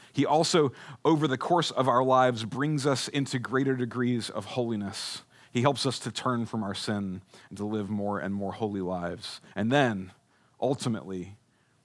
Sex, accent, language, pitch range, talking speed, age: male, American, English, 110-145 Hz, 170 wpm, 40-59